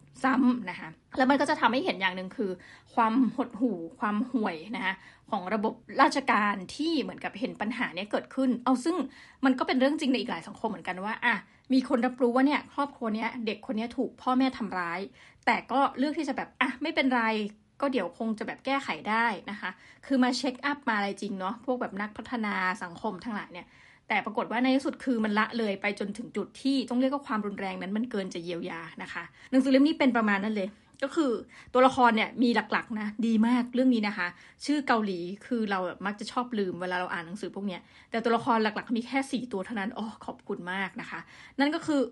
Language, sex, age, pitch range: Thai, female, 20-39, 205-255 Hz